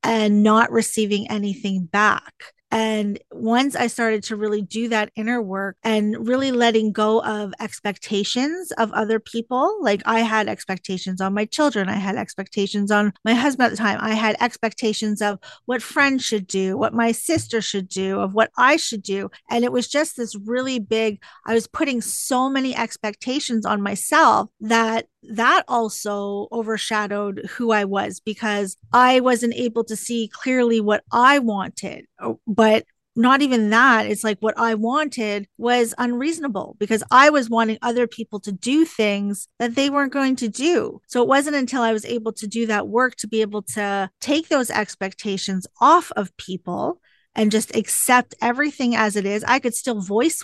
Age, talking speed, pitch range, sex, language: 40-59, 175 wpm, 205-245 Hz, female, English